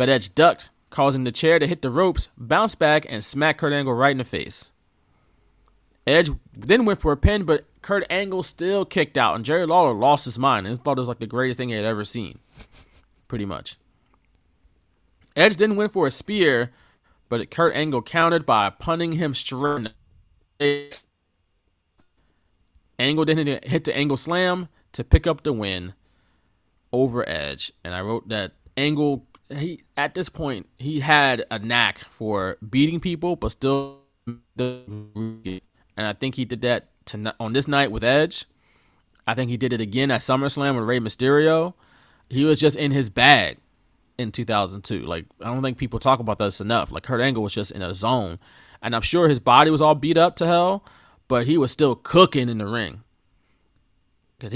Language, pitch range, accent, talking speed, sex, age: English, 105-150 Hz, American, 185 wpm, male, 20-39